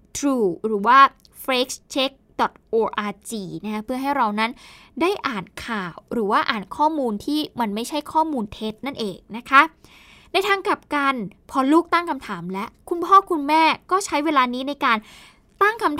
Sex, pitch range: female, 220-300 Hz